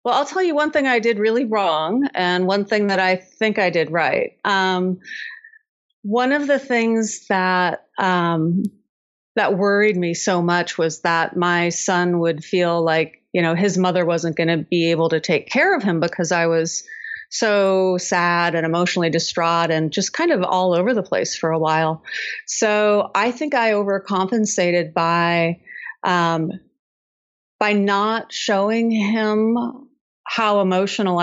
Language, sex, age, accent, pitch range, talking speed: English, female, 30-49, American, 170-220 Hz, 160 wpm